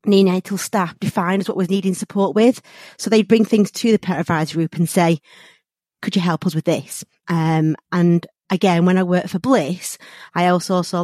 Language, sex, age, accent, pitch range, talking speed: English, female, 30-49, British, 160-195 Hz, 200 wpm